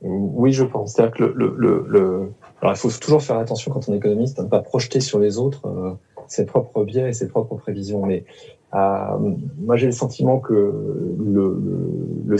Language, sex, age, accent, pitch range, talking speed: French, male, 30-49, French, 100-130 Hz, 205 wpm